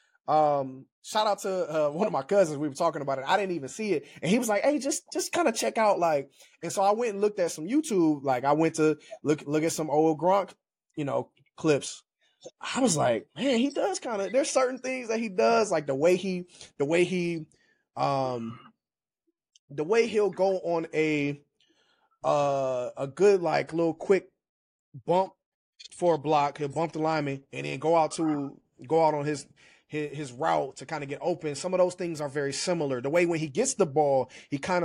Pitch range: 145-205 Hz